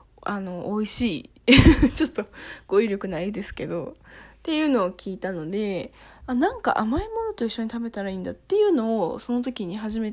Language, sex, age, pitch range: Japanese, female, 20-39, 200-280 Hz